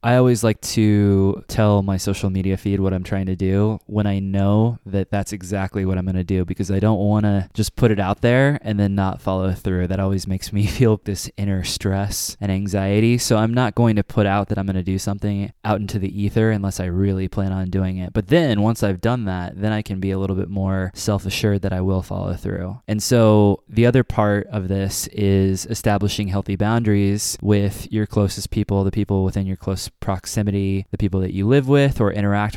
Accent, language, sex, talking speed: American, English, male, 225 wpm